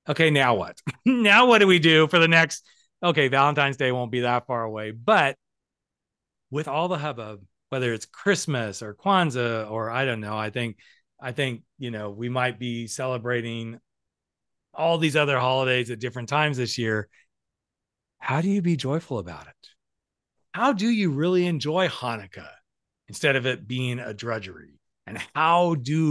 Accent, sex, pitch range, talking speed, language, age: American, male, 120-160 Hz, 170 wpm, English, 30-49